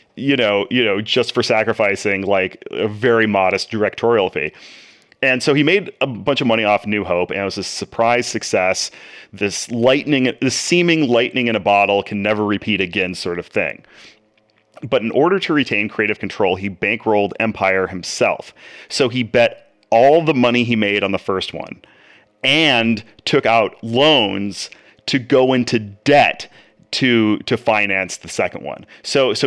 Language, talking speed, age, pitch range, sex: English, 170 wpm, 30-49, 105-130 Hz, male